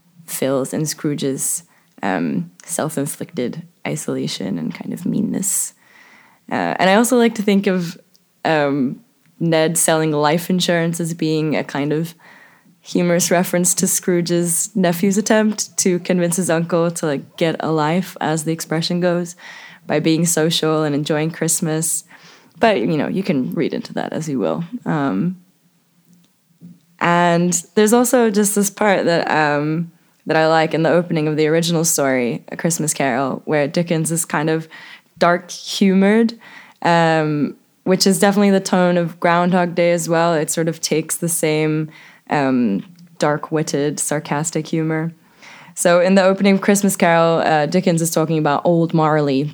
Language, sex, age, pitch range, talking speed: English, female, 20-39, 155-180 Hz, 155 wpm